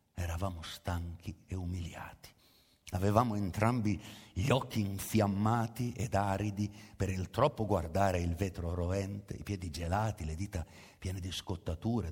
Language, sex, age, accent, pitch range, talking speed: Italian, male, 60-79, native, 90-115 Hz, 130 wpm